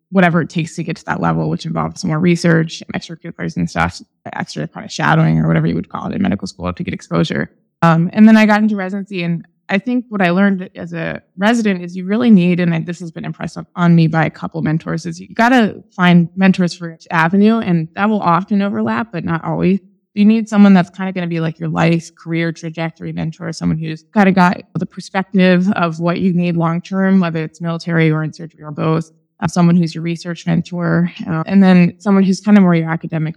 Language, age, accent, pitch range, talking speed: English, 20-39, American, 160-190 Hz, 240 wpm